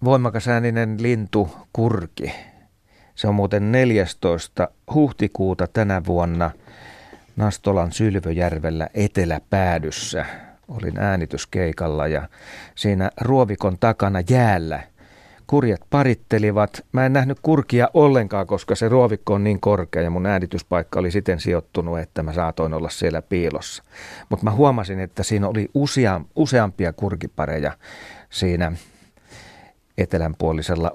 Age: 40-59